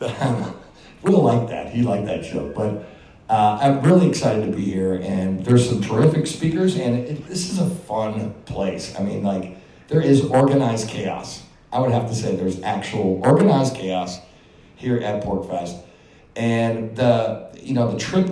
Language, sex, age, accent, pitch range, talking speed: English, male, 60-79, American, 100-140 Hz, 175 wpm